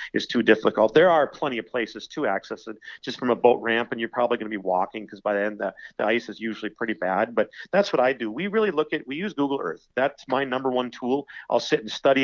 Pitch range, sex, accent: 115-135 Hz, male, American